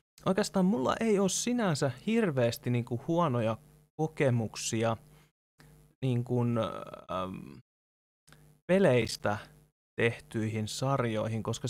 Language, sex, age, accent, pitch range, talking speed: Finnish, male, 20-39, native, 110-150 Hz, 75 wpm